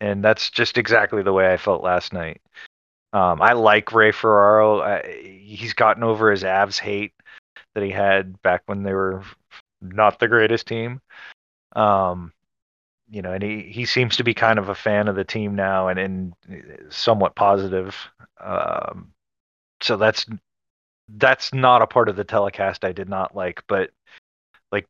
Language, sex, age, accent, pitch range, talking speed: English, male, 30-49, American, 95-115 Hz, 170 wpm